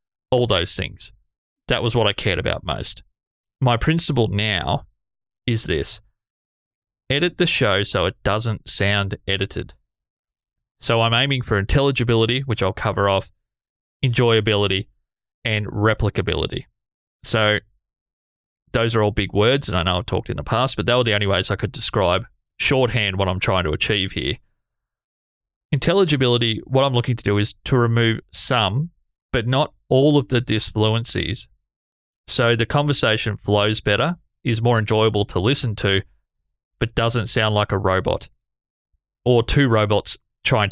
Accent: Australian